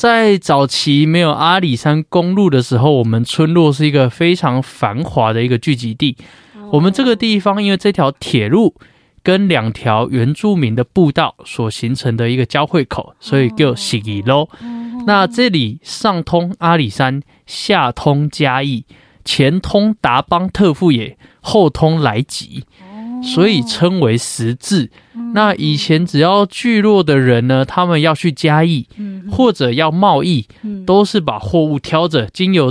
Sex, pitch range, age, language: male, 130-190 Hz, 20-39, Chinese